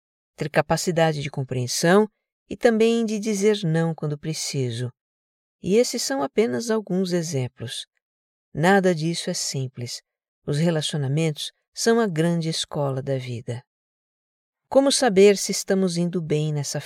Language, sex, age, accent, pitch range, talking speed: Portuguese, female, 50-69, Brazilian, 140-190 Hz, 130 wpm